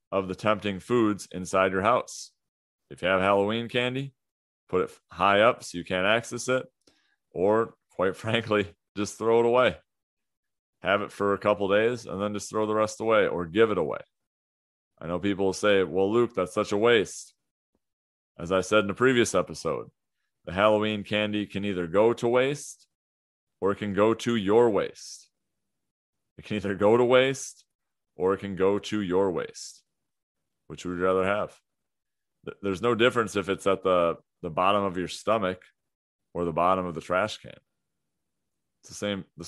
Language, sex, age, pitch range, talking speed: English, male, 30-49, 90-110 Hz, 180 wpm